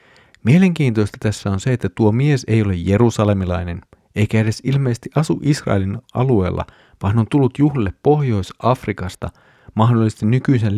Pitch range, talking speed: 100-125 Hz, 130 wpm